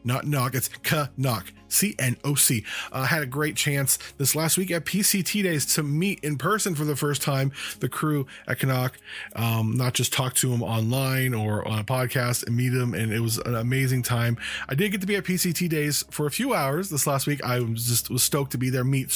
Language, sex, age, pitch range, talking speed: English, male, 20-39, 120-160 Hz, 240 wpm